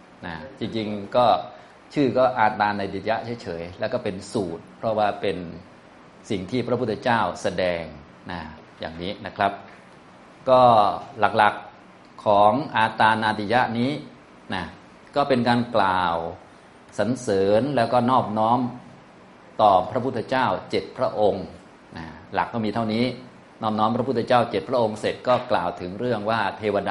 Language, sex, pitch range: Thai, male, 95-120 Hz